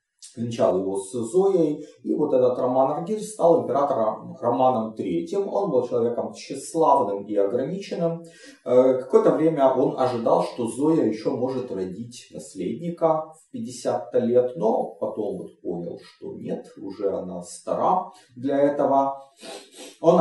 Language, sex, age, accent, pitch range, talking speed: Russian, male, 30-49, native, 120-175 Hz, 130 wpm